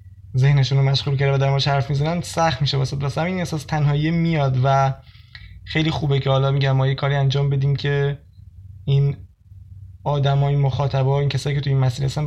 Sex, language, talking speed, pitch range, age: male, Persian, 185 wpm, 135-160 Hz, 20-39